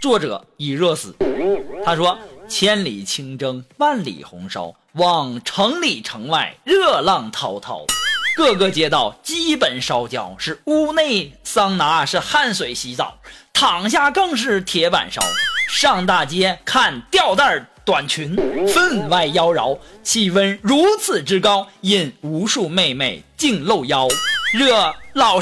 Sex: male